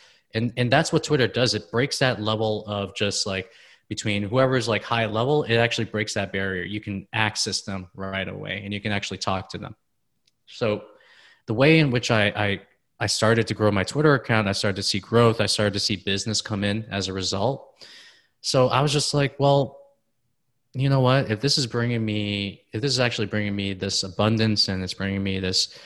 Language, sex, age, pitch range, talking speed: English, male, 20-39, 100-125 Hz, 215 wpm